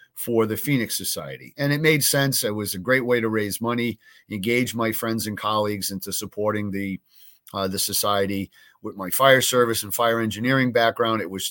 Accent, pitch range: American, 100-120 Hz